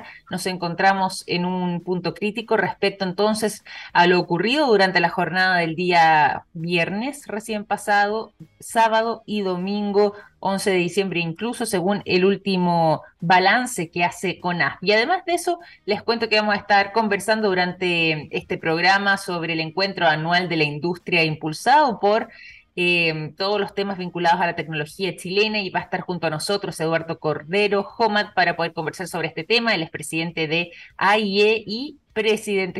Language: Spanish